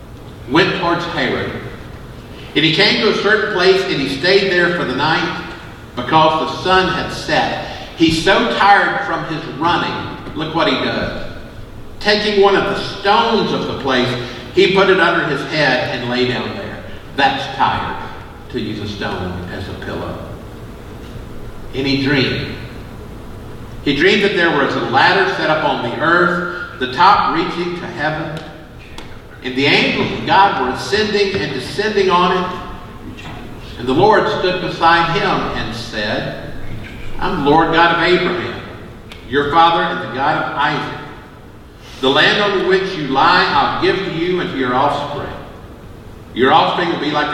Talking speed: 165 wpm